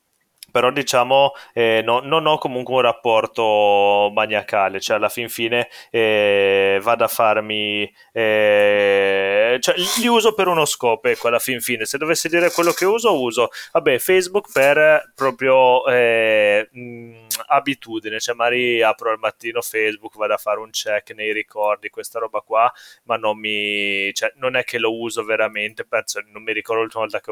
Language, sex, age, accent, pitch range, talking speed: Italian, male, 20-39, native, 110-130 Hz, 165 wpm